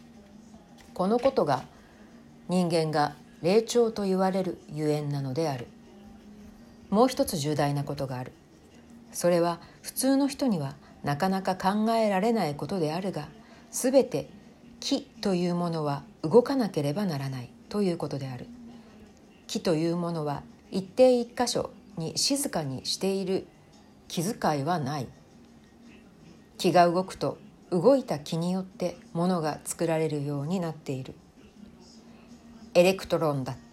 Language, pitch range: Japanese, 155-230 Hz